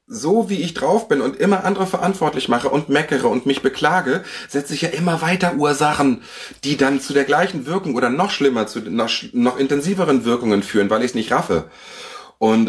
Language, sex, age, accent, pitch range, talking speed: German, male, 40-59, German, 120-145 Hz, 195 wpm